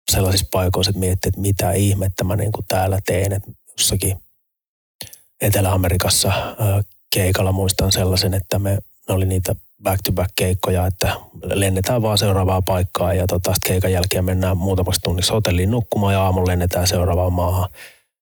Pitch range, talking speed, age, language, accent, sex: 90-100 Hz, 140 wpm, 30-49, Finnish, native, male